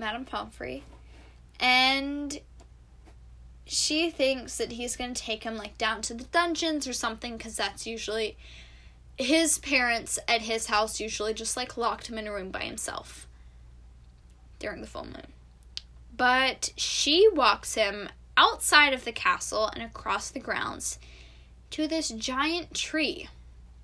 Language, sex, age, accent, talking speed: English, female, 10-29, American, 140 wpm